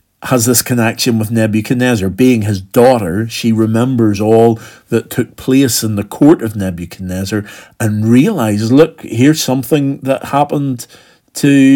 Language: English